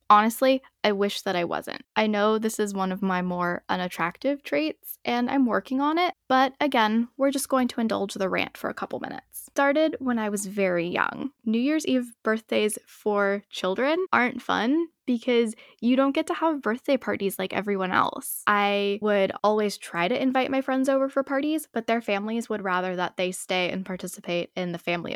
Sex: female